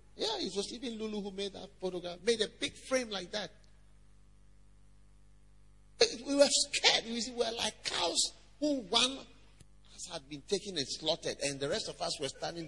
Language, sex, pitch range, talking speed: English, male, 140-215 Hz, 170 wpm